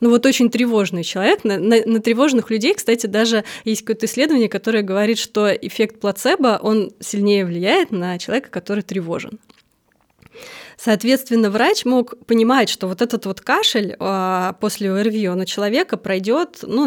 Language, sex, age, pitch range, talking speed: Russian, female, 20-39, 195-240 Hz, 150 wpm